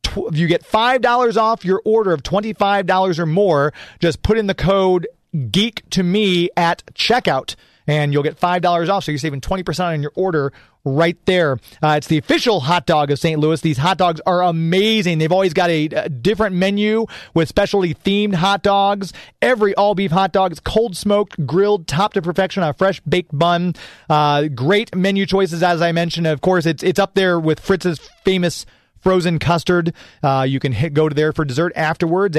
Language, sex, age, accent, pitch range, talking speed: English, male, 30-49, American, 155-195 Hz, 185 wpm